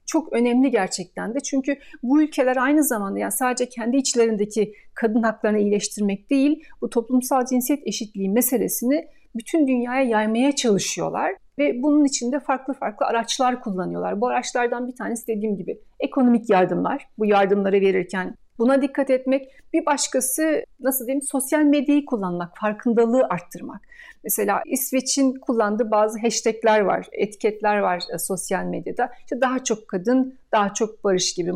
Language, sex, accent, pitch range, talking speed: Turkish, female, native, 220-295 Hz, 140 wpm